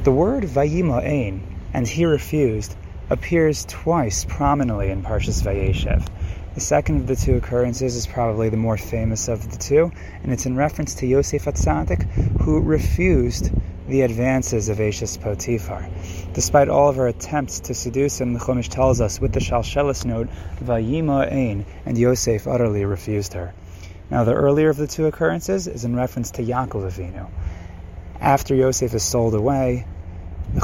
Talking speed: 160 wpm